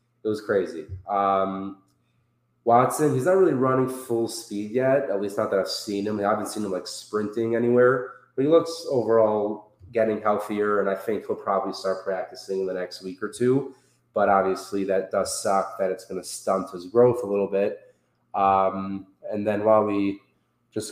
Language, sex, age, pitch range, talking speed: English, male, 20-39, 95-120 Hz, 190 wpm